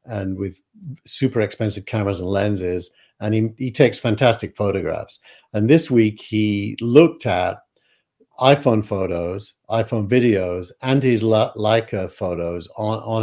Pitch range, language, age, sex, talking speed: 100-125 Hz, English, 60-79, male, 130 wpm